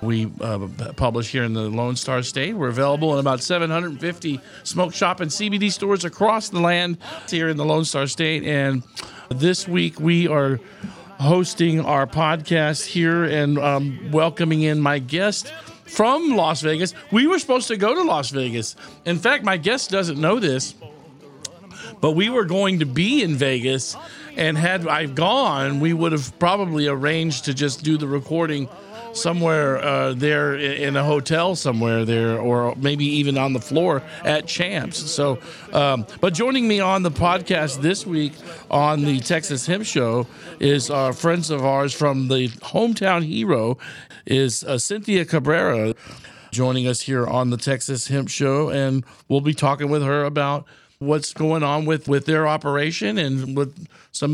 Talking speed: 170 wpm